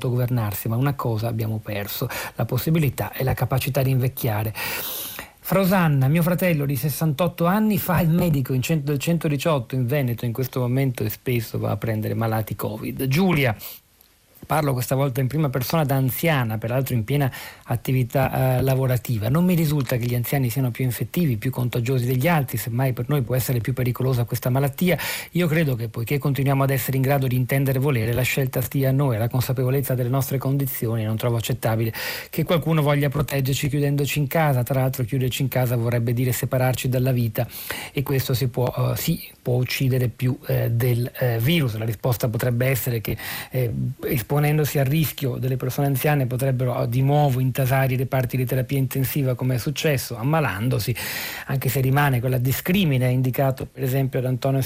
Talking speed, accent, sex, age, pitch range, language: 180 wpm, native, male, 40-59, 125-140 Hz, Italian